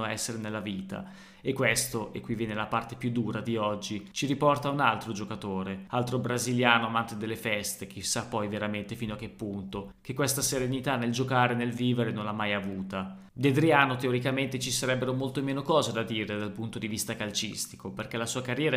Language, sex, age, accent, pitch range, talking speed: Italian, male, 20-39, native, 110-130 Hz, 195 wpm